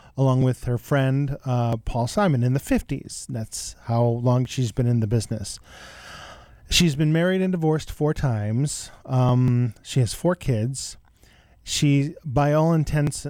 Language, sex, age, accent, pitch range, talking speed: English, male, 40-59, American, 120-155 Hz, 155 wpm